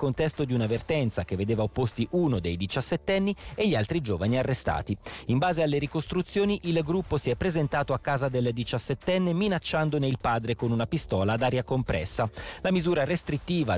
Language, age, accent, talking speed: Italian, 30-49, native, 170 wpm